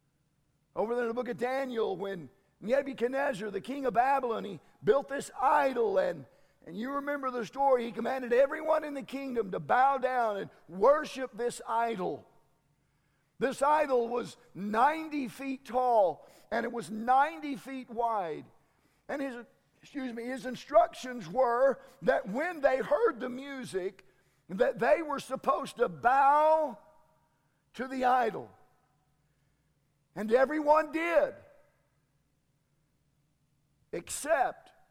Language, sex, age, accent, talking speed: English, male, 50-69, American, 125 wpm